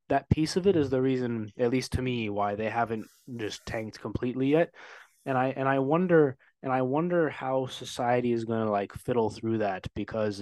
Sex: male